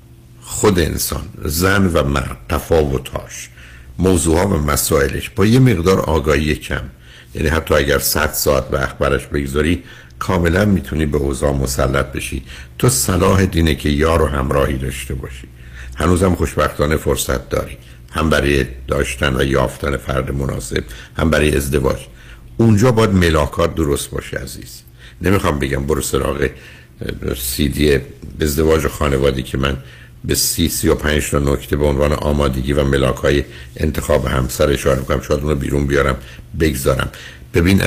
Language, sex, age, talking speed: Persian, male, 60-79, 135 wpm